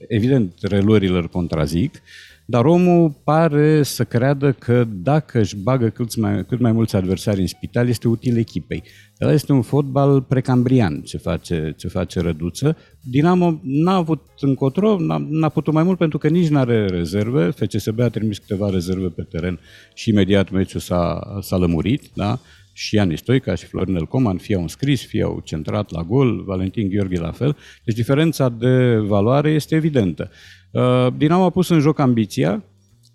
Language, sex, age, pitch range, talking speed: Romanian, male, 50-69, 90-135 Hz, 165 wpm